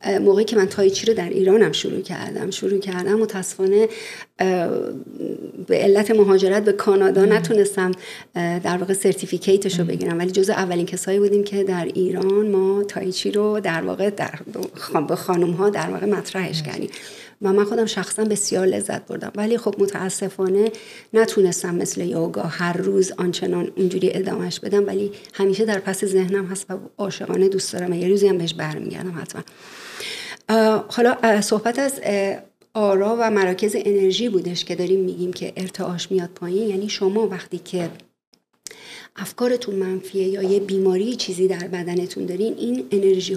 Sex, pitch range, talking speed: female, 185-205 Hz, 150 wpm